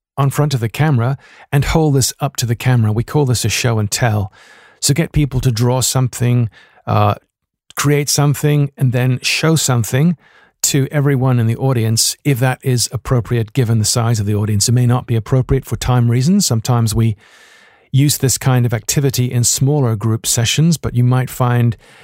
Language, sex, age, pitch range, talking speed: English, male, 50-69, 120-145 Hz, 190 wpm